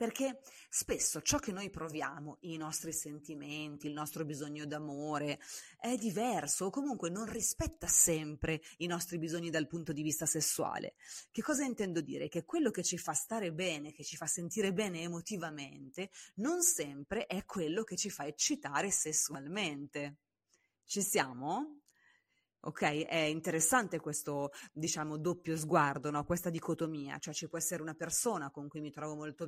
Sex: female